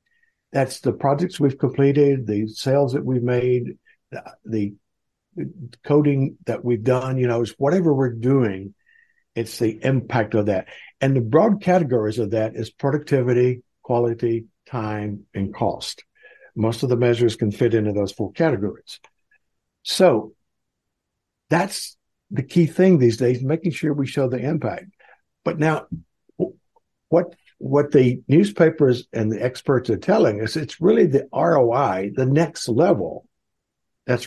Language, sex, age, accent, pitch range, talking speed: English, male, 60-79, American, 110-145 Hz, 145 wpm